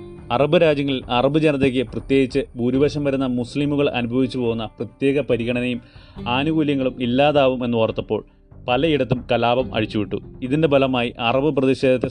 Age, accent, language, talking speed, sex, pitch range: 30-49, native, Malayalam, 105 wpm, male, 115-140 Hz